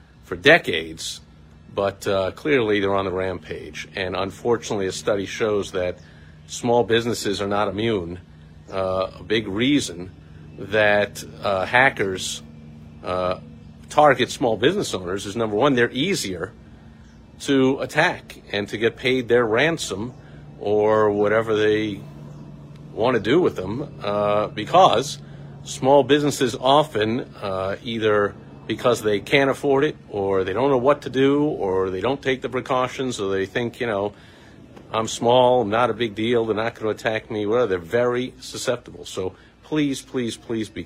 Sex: male